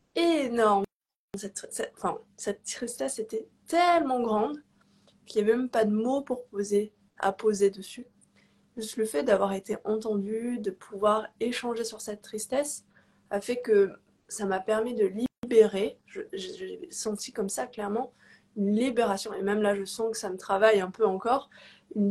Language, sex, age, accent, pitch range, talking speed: French, female, 20-39, French, 205-245 Hz, 175 wpm